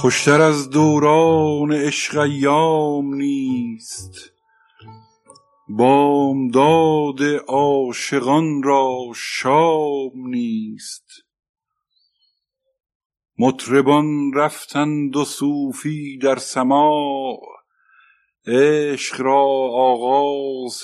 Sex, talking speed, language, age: male, 60 wpm, Persian, 50-69